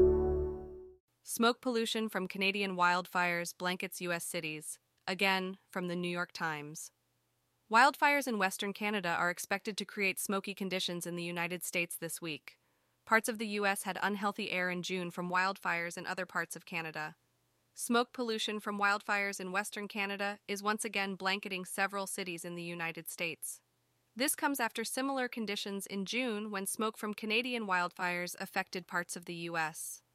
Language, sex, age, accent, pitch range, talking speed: English, female, 20-39, American, 175-215 Hz, 160 wpm